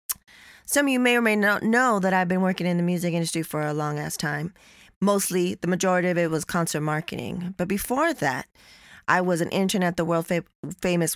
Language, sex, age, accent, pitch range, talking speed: English, female, 20-39, American, 165-195 Hz, 205 wpm